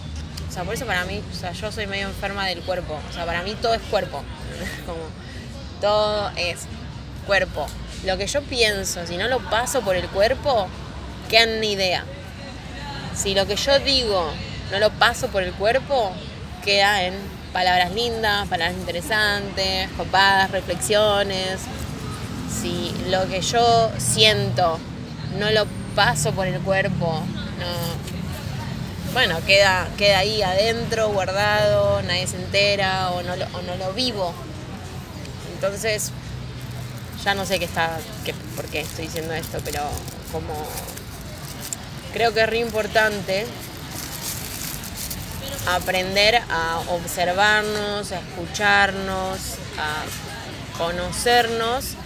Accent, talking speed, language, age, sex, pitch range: Argentinian, 130 wpm, English, 20-39, female, 160-210 Hz